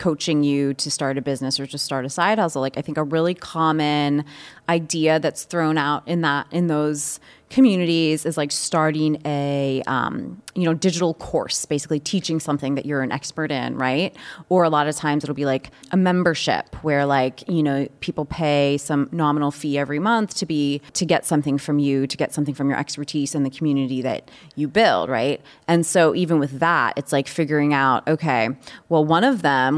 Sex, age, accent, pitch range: female, 20-39, American, 145-170 Hz